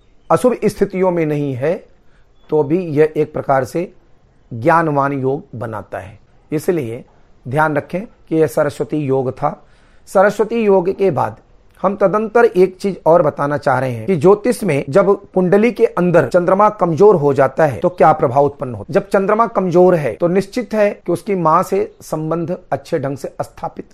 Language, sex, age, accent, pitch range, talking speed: Hindi, male, 40-59, native, 145-205 Hz, 175 wpm